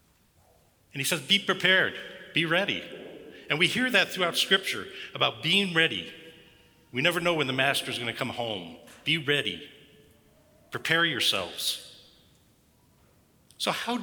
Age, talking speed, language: 50-69, 135 wpm, English